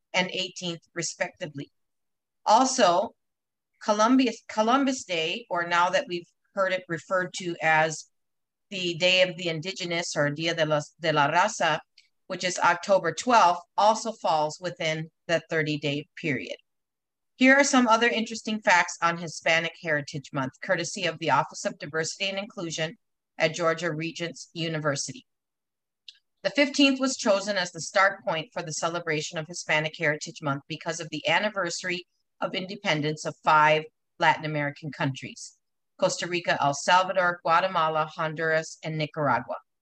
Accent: American